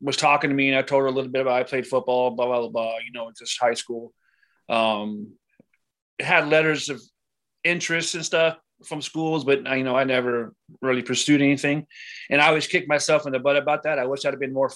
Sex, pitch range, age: male, 130-150 Hz, 30-49